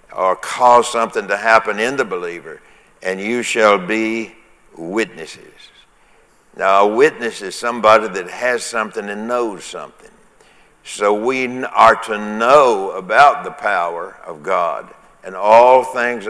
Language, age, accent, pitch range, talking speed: English, 60-79, American, 100-125 Hz, 135 wpm